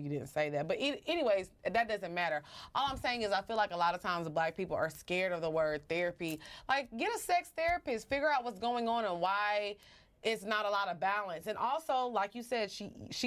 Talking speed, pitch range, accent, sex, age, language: 235 wpm, 165-235 Hz, American, female, 20-39, English